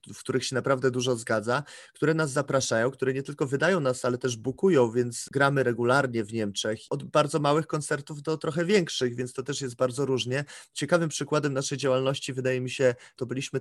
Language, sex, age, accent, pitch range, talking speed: Polish, male, 20-39, native, 125-145 Hz, 195 wpm